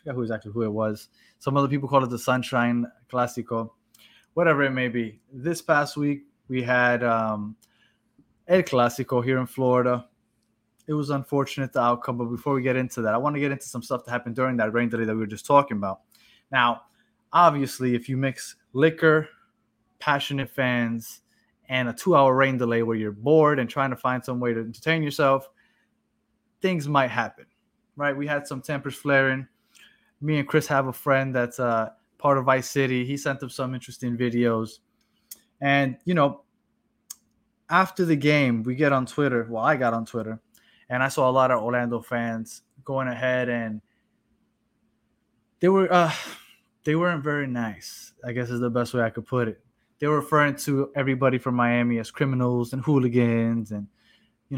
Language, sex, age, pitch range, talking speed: English, male, 20-39, 115-140 Hz, 180 wpm